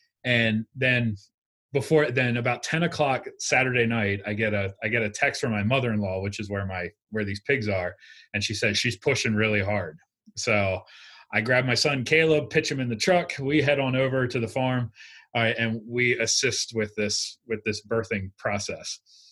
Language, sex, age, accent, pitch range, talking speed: English, male, 30-49, American, 105-130 Hz, 200 wpm